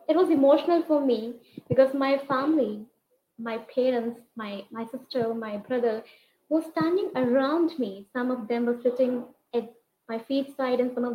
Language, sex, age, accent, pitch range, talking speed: English, female, 20-39, Indian, 235-290 Hz, 165 wpm